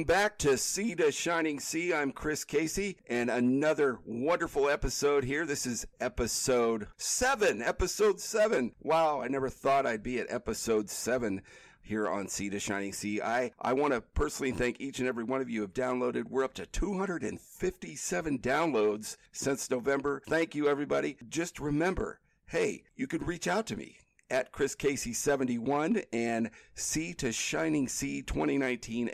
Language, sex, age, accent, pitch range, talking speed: English, male, 50-69, American, 115-155 Hz, 165 wpm